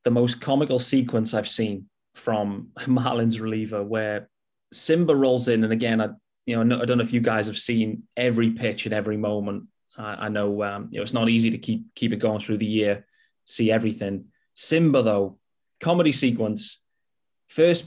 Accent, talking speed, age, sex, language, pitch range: British, 180 wpm, 30-49, male, English, 110-145 Hz